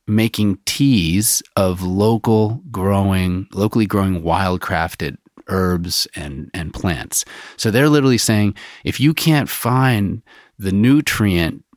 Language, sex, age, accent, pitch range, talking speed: English, male, 30-49, American, 90-110 Hz, 110 wpm